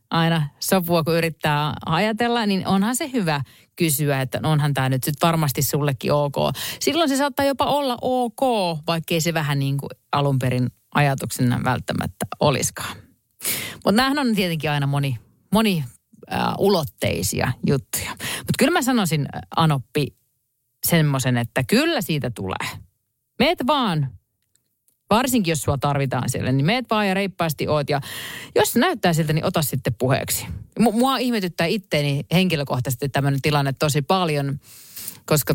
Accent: native